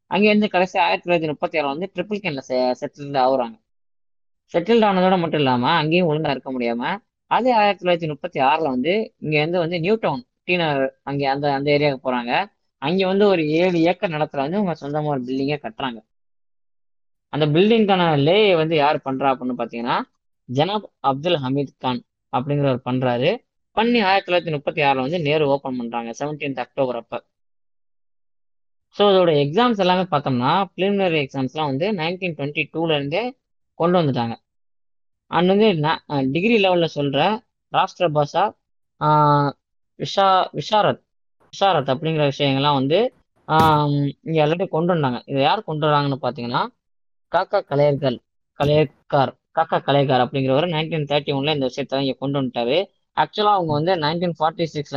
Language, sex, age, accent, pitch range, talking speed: Tamil, female, 20-39, native, 130-175 Hz, 135 wpm